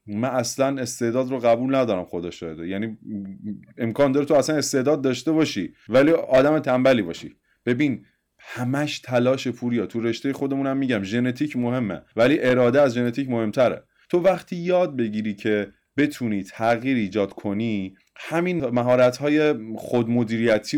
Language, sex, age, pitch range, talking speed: Persian, male, 30-49, 100-130 Hz, 135 wpm